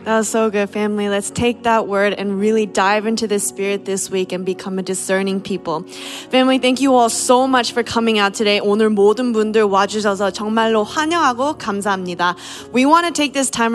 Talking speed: 190 wpm